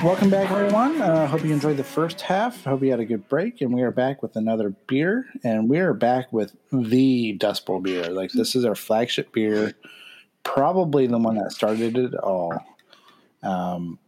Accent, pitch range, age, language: American, 105-135 Hz, 30-49, English